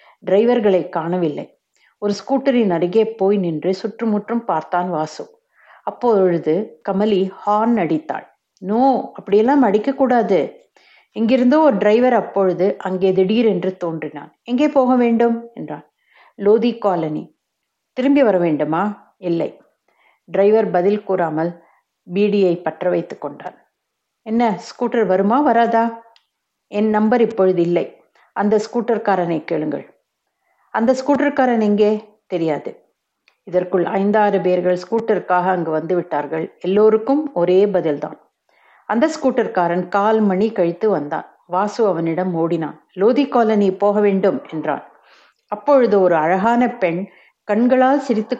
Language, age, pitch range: Tamil, 50-69, 180-235 Hz